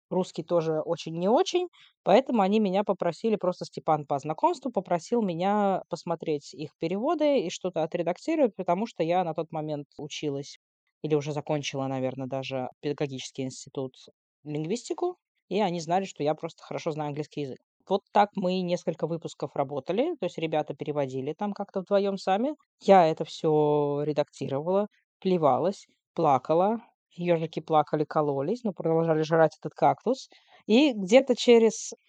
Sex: female